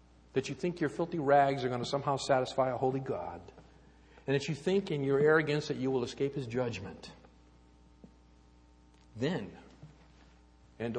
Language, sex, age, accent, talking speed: English, male, 50-69, American, 160 wpm